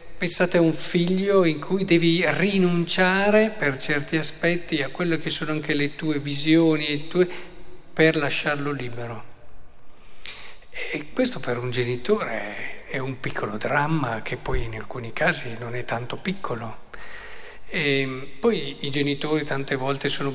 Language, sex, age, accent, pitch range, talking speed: Italian, male, 50-69, native, 135-175 Hz, 135 wpm